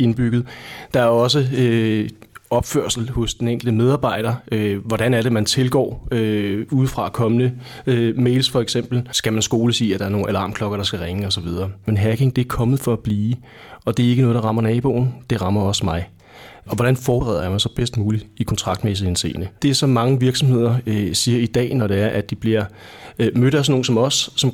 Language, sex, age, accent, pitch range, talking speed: Danish, male, 30-49, native, 105-125 Hz, 215 wpm